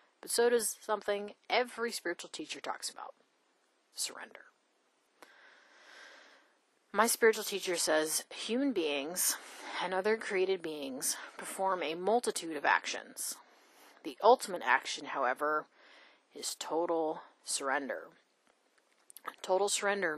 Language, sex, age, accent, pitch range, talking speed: English, female, 30-49, American, 155-195 Hz, 100 wpm